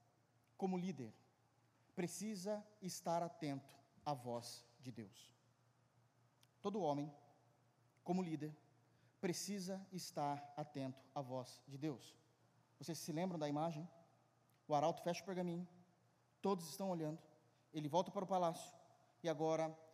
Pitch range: 125-180 Hz